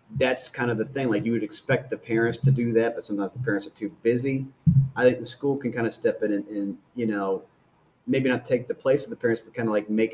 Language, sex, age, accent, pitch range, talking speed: English, male, 30-49, American, 110-135 Hz, 280 wpm